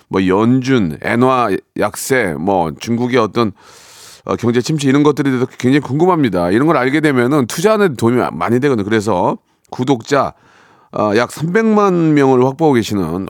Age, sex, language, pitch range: 40-59, male, Korean, 105-140 Hz